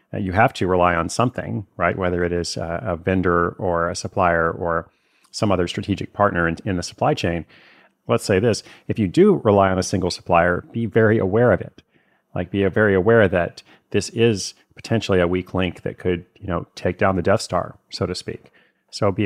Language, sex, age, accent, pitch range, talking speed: English, male, 30-49, American, 95-120 Hz, 210 wpm